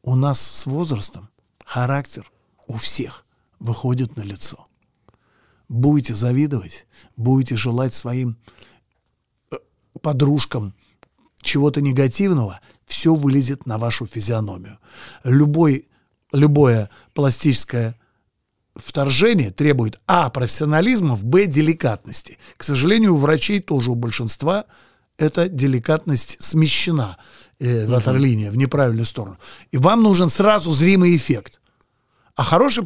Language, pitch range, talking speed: Russian, 120-165 Hz, 95 wpm